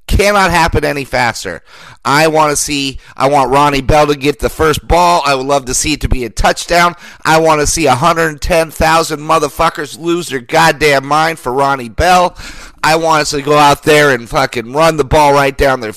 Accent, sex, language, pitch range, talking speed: American, male, English, 140-200 Hz, 205 wpm